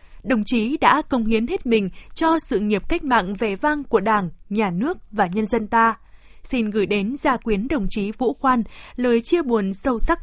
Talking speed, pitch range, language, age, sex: 210 wpm, 215-265 Hz, Vietnamese, 20-39, female